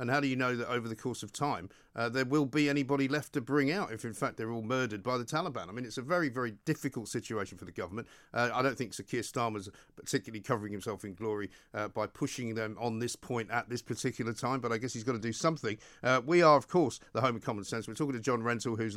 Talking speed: 275 wpm